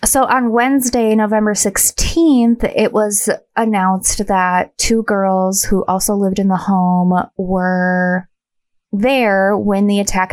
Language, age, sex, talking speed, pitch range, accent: English, 20-39, female, 130 wpm, 185-225 Hz, American